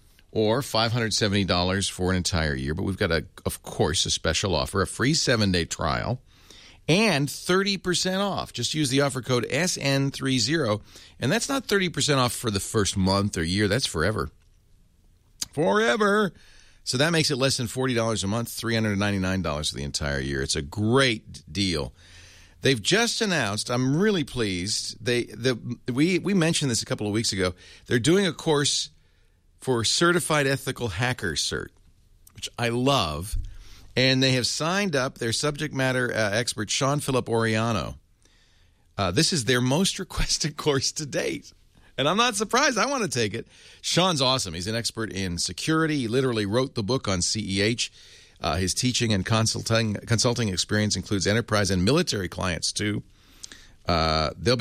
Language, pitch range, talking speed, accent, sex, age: English, 95-135 Hz, 165 wpm, American, male, 40-59